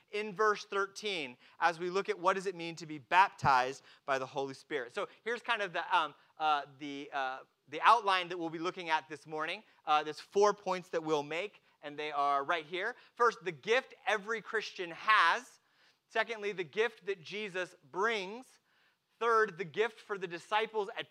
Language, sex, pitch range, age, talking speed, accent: English, male, 165-225 Hz, 30-49, 180 wpm, American